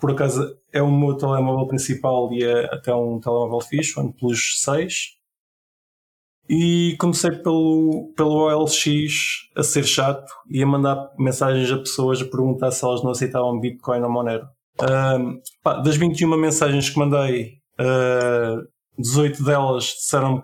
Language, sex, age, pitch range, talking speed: Portuguese, male, 20-39, 125-150 Hz, 145 wpm